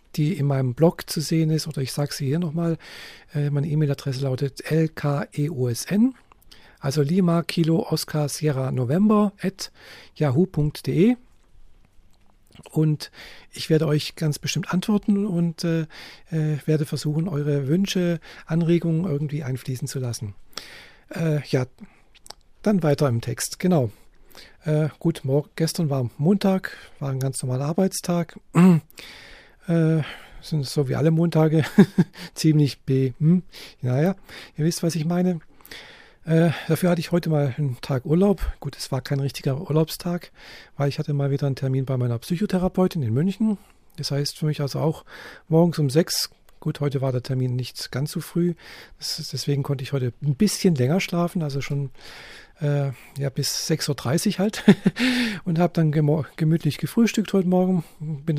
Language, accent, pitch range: German, German, 140-175 Hz